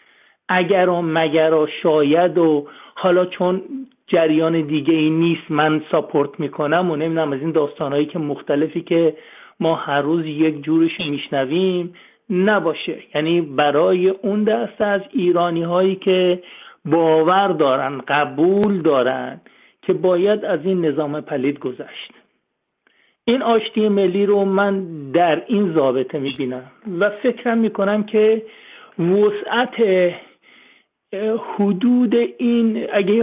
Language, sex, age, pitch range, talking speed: Persian, male, 50-69, 155-205 Hz, 120 wpm